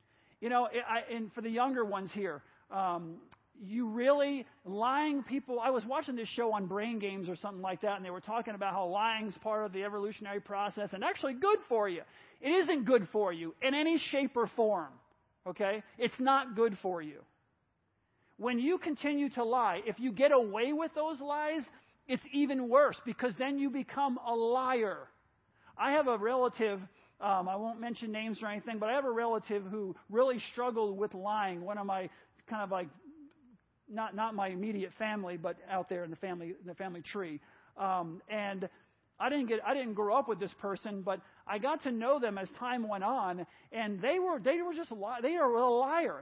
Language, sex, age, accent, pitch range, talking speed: English, male, 40-59, American, 195-255 Hz, 200 wpm